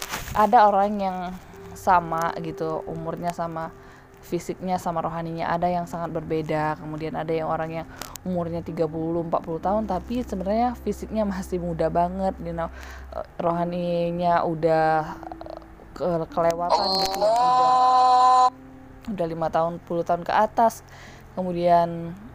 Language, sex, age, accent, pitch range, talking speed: Indonesian, female, 10-29, native, 165-210 Hz, 120 wpm